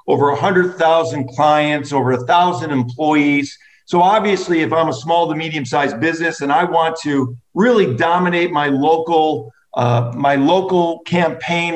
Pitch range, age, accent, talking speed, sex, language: 145-180 Hz, 50-69, American, 140 wpm, male, English